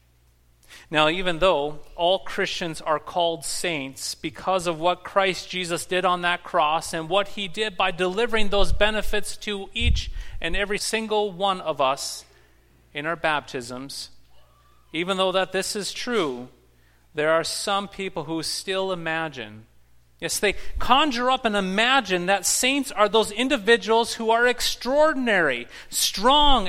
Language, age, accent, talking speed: English, 30-49, American, 145 wpm